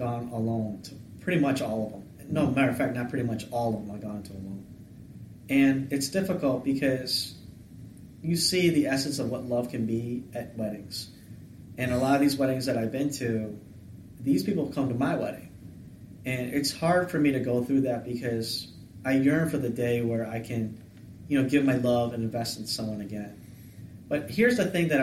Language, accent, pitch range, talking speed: English, American, 110-135 Hz, 205 wpm